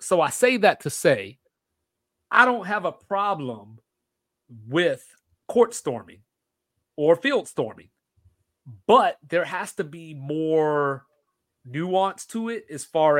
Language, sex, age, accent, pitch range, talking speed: English, male, 30-49, American, 130-170 Hz, 125 wpm